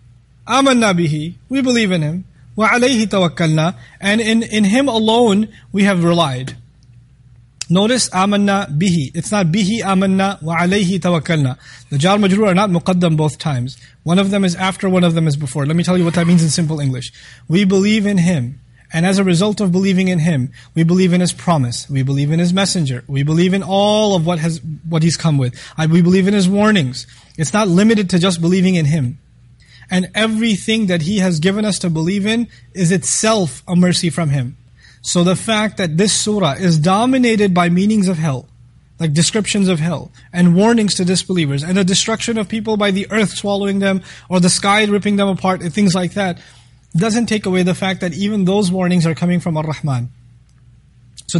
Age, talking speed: 30-49, 200 wpm